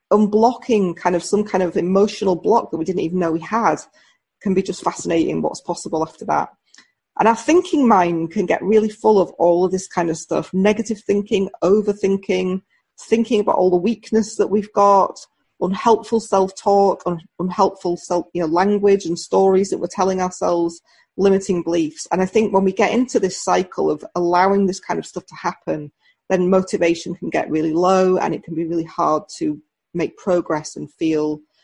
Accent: British